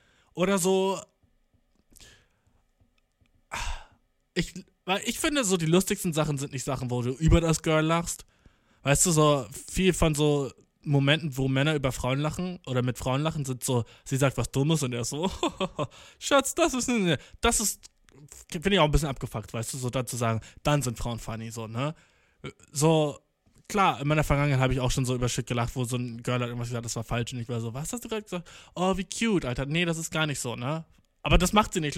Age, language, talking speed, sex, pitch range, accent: 20-39, German, 210 wpm, male, 130-180 Hz, German